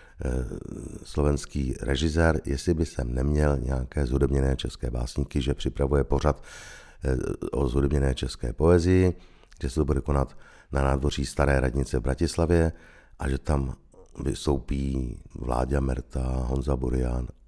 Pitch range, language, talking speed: 65-75 Hz, Czech, 125 wpm